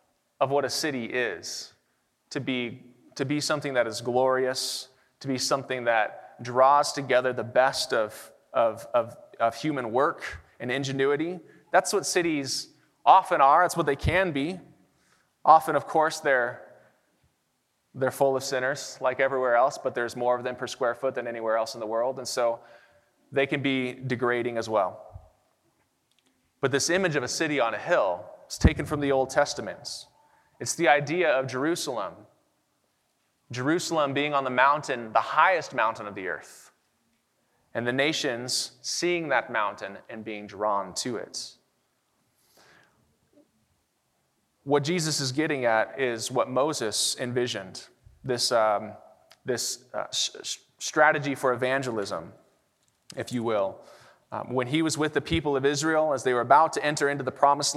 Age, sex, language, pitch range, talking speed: 30-49, male, English, 125-145 Hz, 155 wpm